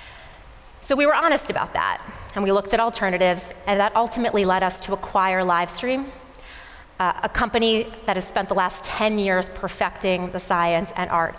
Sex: female